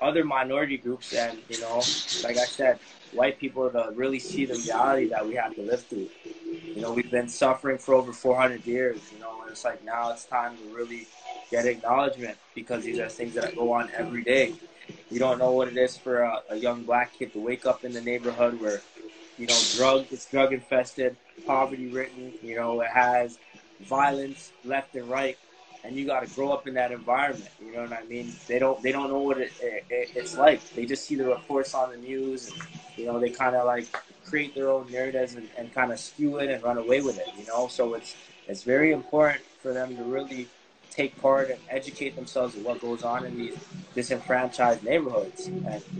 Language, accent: English, American